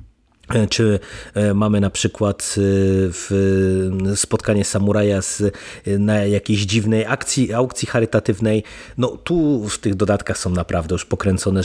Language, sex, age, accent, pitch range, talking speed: Polish, male, 30-49, native, 100-115 Hz, 110 wpm